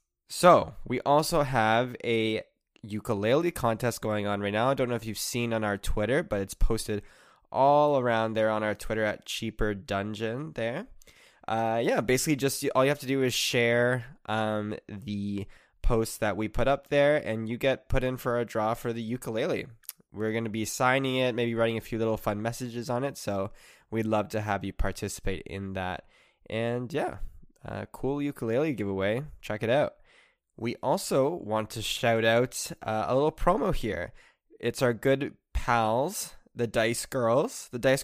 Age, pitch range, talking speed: 10-29, 110-125 Hz, 185 wpm